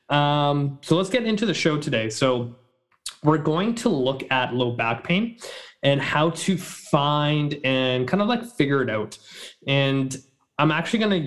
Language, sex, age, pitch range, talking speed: English, male, 20-39, 125-165 Hz, 175 wpm